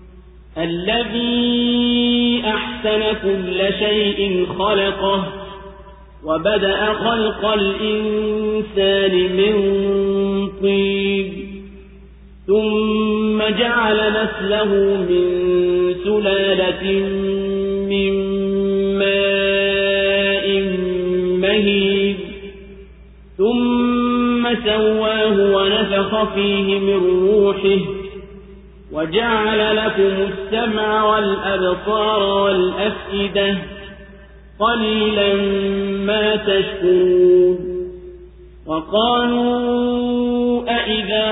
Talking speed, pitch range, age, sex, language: 45 wpm, 195-215 Hz, 40-59, male, Swahili